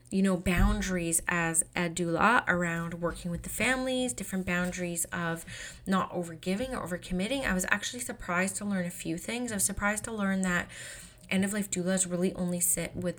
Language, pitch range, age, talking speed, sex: English, 175-200 Hz, 20-39, 190 wpm, female